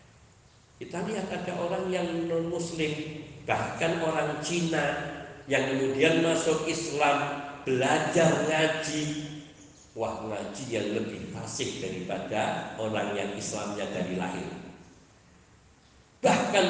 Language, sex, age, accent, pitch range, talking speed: Indonesian, male, 50-69, native, 115-160 Hz, 100 wpm